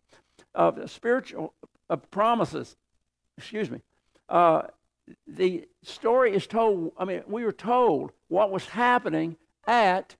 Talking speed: 110 wpm